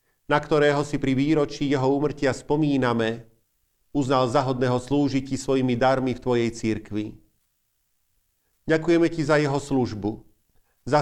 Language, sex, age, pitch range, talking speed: Slovak, male, 40-59, 120-150 Hz, 120 wpm